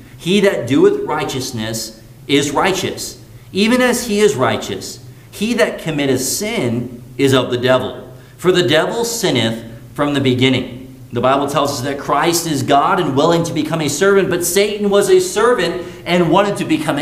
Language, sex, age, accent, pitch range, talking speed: English, male, 40-59, American, 125-185 Hz, 175 wpm